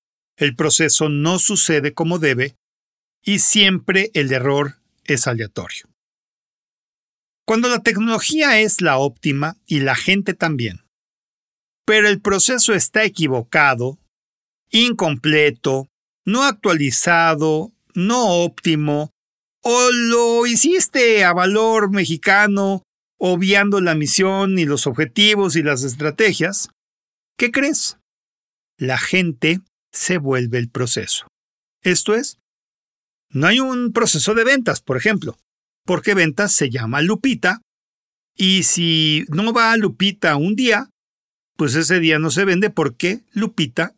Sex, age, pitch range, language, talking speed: male, 50-69, 145-210 Hz, Spanish, 115 wpm